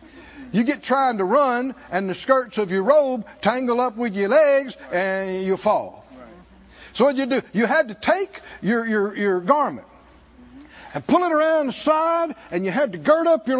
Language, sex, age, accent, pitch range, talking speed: English, male, 60-79, American, 205-285 Hz, 200 wpm